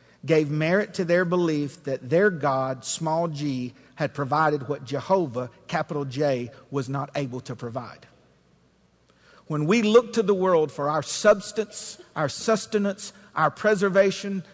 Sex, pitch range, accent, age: male, 145-200 Hz, American, 50-69